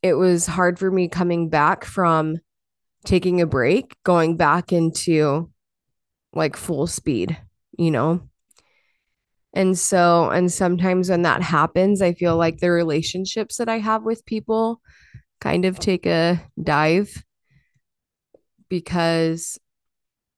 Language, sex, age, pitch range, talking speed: English, female, 20-39, 165-195 Hz, 125 wpm